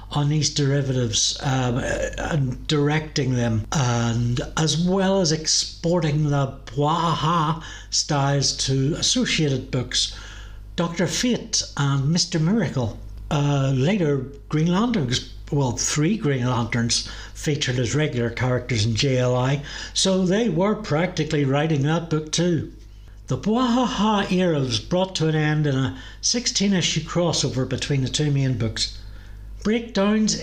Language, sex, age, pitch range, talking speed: English, male, 60-79, 125-165 Hz, 125 wpm